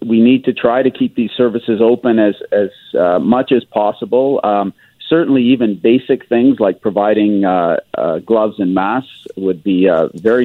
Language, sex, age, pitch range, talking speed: English, male, 40-59, 95-110 Hz, 180 wpm